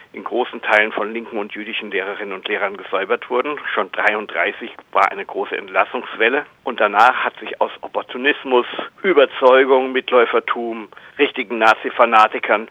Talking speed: 130 wpm